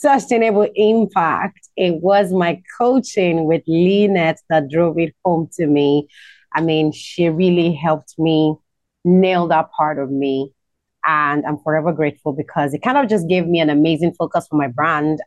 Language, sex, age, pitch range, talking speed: English, female, 30-49, 160-200 Hz, 165 wpm